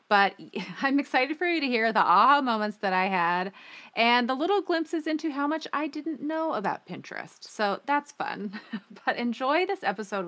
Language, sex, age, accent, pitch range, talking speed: English, female, 30-49, American, 185-235 Hz, 185 wpm